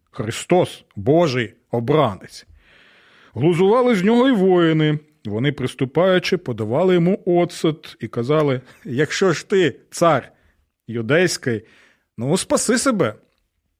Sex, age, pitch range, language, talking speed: male, 40-59, 110-160 Hz, Ukrainian, 100 wpm